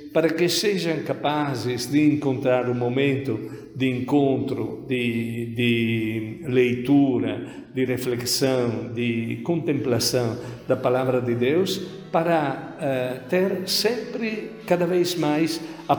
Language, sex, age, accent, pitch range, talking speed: Portuguese, male, 60-79, Italian, 125-155 Hz, 115 wpm